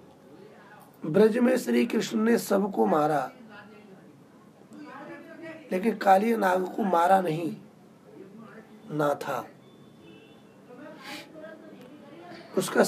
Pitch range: 165-255 Hz